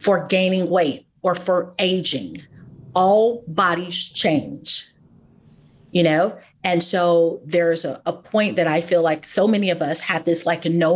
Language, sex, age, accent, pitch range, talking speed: English, female, 40-59, American, 165-205 Hz, 160 wpm